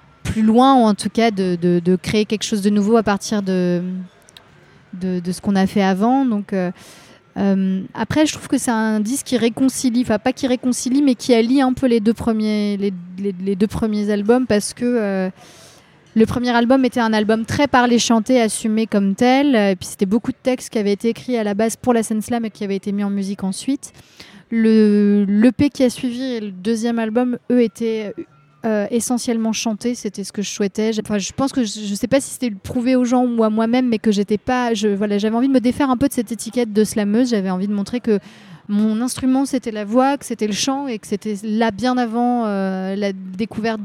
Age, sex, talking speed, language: 30-49, female, 235 wpm, French